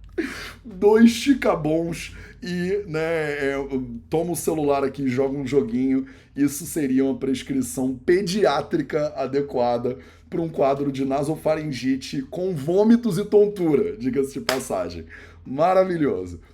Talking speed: 110 wpm